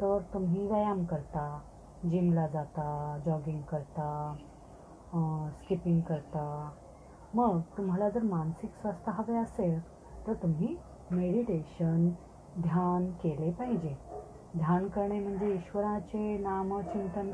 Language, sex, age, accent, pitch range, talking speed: Marathi, female, 30-49, native, 170-205 Hz, 85 wpm